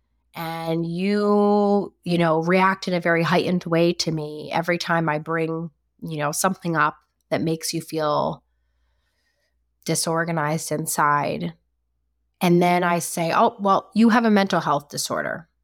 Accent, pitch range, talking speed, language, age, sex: American, 160-205 Hz, 145 wpm, English, 20-39, female